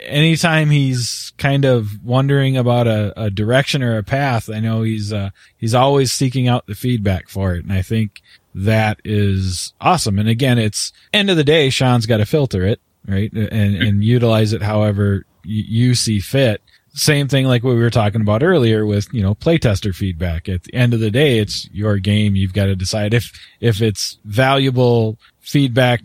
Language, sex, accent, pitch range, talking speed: English, male, American, 105-125 Hz, 195 wpm